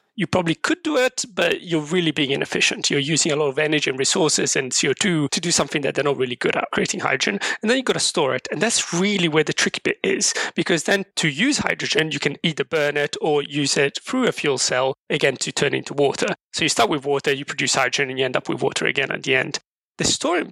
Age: 30-49